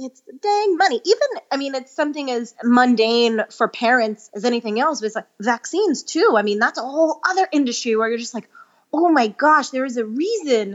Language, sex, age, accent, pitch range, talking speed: English, female, 20-39, American, 225-315 Hz, 220 wpm